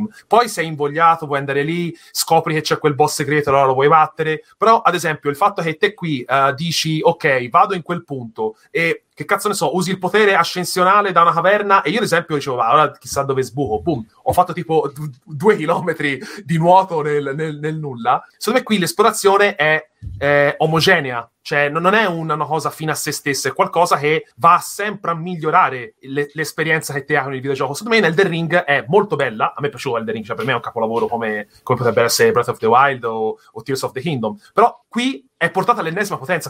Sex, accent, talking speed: male, Italian, 225 wpm